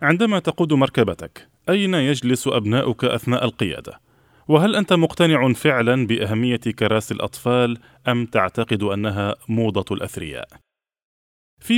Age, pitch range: 20-39, 110-150 Hz